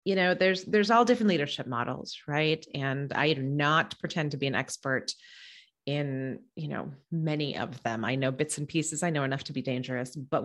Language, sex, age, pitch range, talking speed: English, female, 30-49, 140-205 Hz, 205 wpm